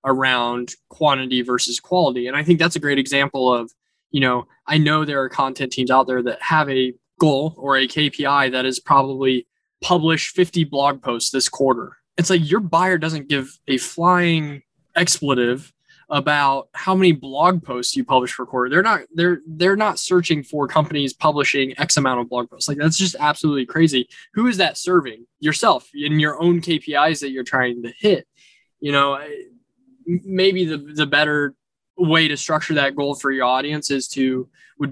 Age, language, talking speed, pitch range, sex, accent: 10-29, English, 185 wpm, 125-160 Hz, male, American